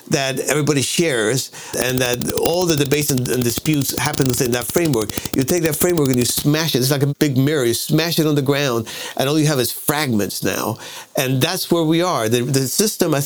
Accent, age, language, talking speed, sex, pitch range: American, 50-69, English, 220 wpm, male, 125-155 Hz